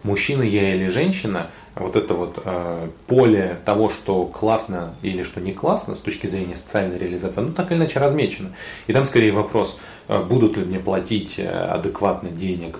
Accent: native